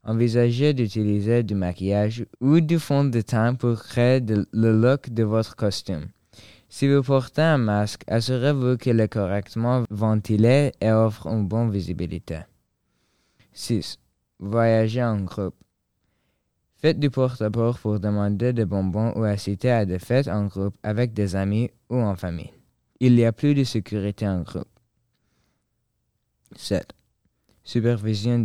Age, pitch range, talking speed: 20-39, 95-120 Hz, 140 wpm